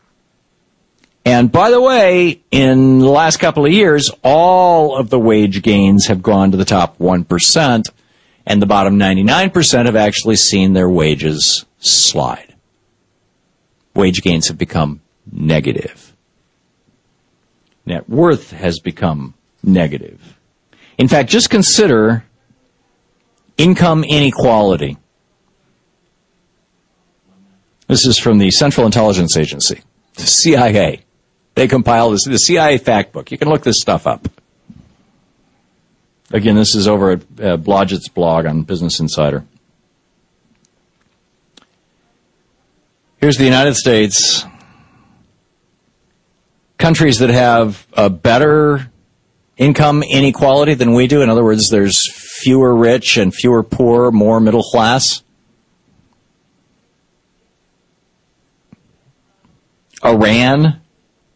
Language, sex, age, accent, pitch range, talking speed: English, male, 50-69, American, 95-135 Hz, 105 wpm